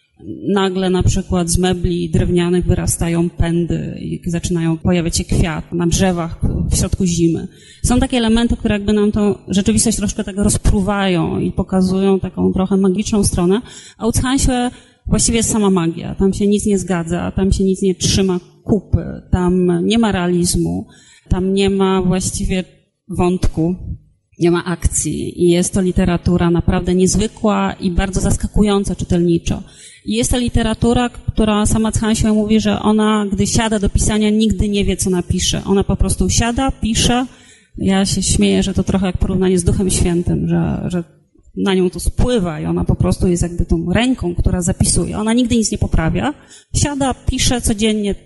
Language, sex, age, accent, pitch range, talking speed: Polish, female, 30-49, native, 175-210 Hz, 170 wpm